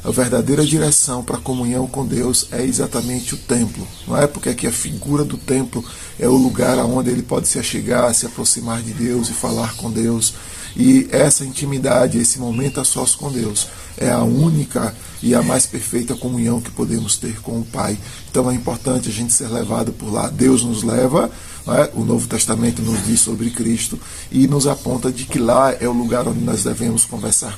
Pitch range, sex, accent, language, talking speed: 115-130 Hz, male, Brazilian, Portuguese, 200 wpm